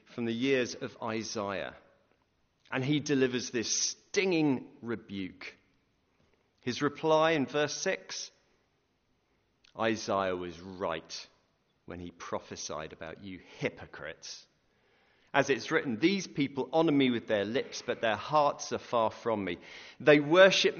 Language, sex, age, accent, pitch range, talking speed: English, male, 40-59, British, 110-160 Hz, 125 wpm